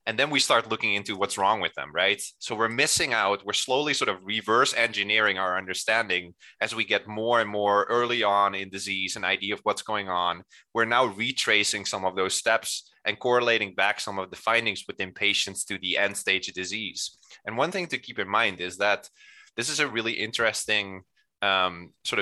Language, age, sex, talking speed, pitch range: English, 20-39, male, 210 wpm, 95-110 Hz